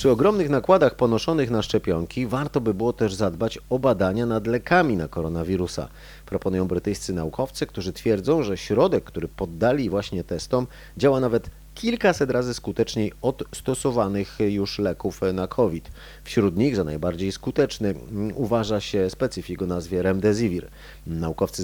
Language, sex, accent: Polish, male, native